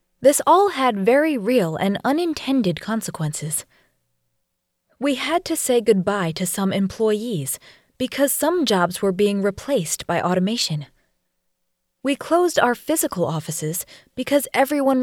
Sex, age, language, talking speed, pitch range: female, 20-39, English, 125 wpm, 180-260 Hz